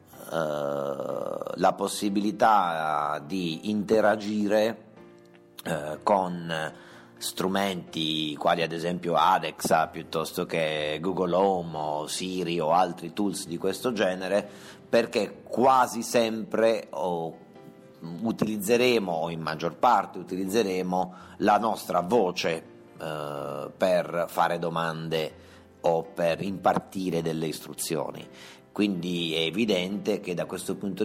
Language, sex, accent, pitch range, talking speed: Italian, male, native, 80-105 Hz, 100 wpm